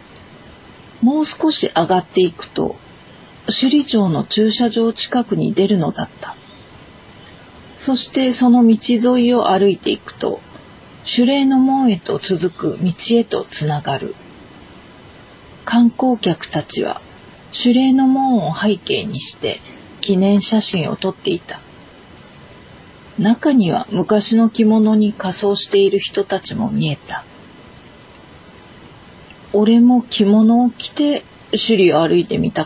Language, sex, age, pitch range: Japanese, female, 40-59, 195-245 Hz